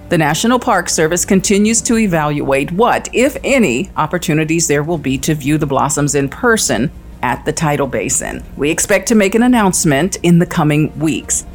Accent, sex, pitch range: American, female, 155-195 Hz